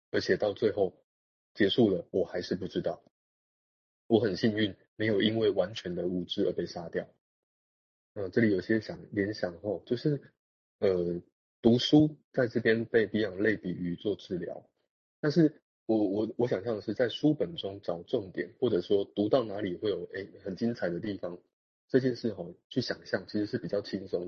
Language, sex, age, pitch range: Chinese, male, 20-39, 90-120 Hz